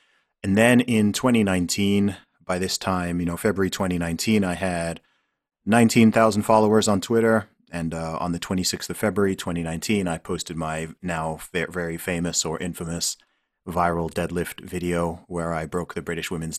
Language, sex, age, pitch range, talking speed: English, male, 30-49, 80-90 Hz, 150 wpm